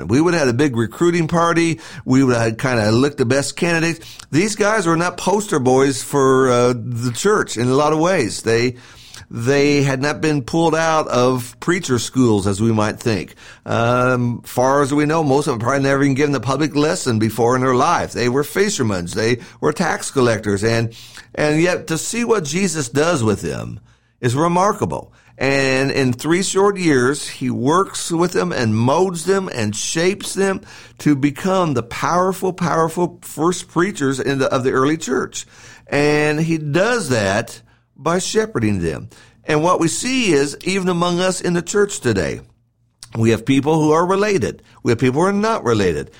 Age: 50-69